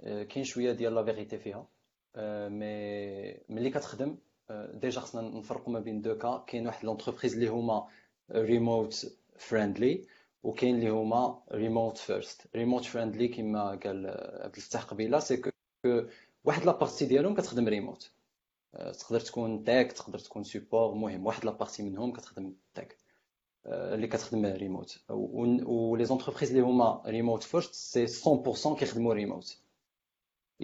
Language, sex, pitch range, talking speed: Arabic, male, 110-130 Hz, 115 wpm